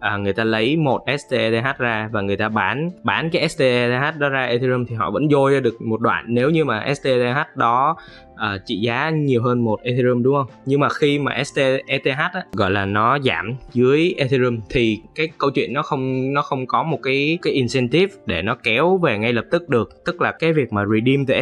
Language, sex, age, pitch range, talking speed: Vietnamese, male, 20-39, 110-140 Hz, 225 wpm